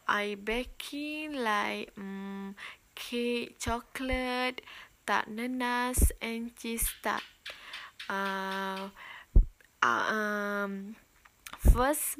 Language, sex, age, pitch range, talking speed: Malay, female, 20-39, 215-255 Hz, 70 wpm